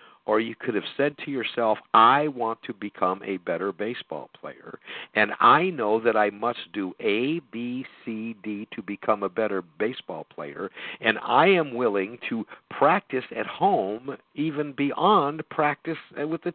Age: 60-79